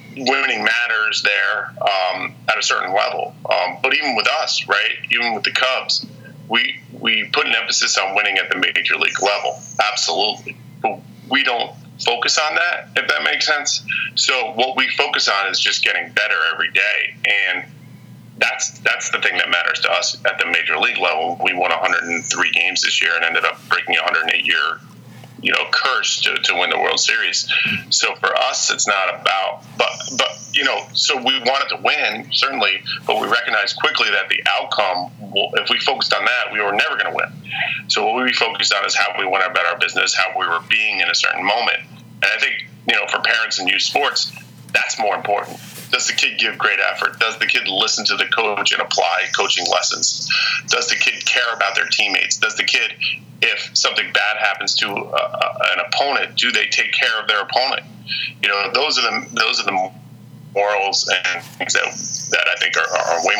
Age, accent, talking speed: 30-49, American, 205 wpm